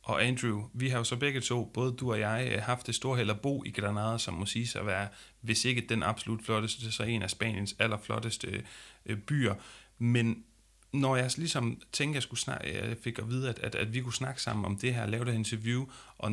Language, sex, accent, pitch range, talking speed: Danish, male, native, 110-130 Hz, 245 wpm